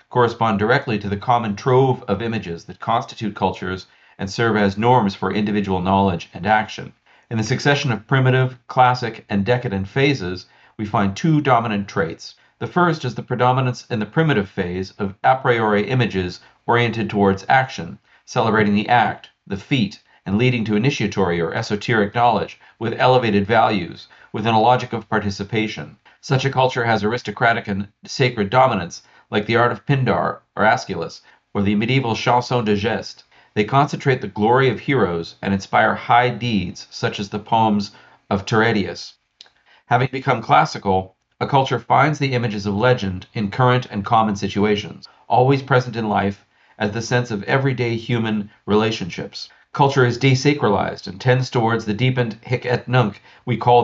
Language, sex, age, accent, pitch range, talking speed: English, male, 50-69, American, 100-125 Hz, 165 wpm